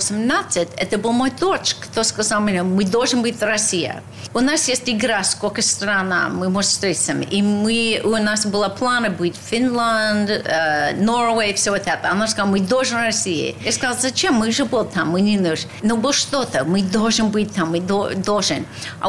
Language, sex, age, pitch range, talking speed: Russian, female, 40-59, 195-240 Hz, 200 wpm